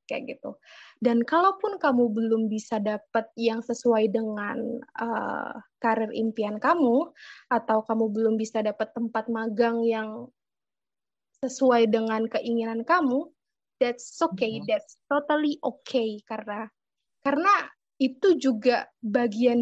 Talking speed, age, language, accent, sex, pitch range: 115 wpm, 20-39, Indonesian, native, female, 225-265 Hz